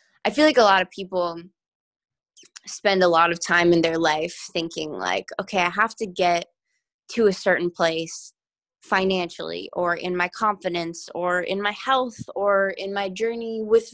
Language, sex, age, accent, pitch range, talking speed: English, female, 20-39, American, 175-225 Hz, 170 wpm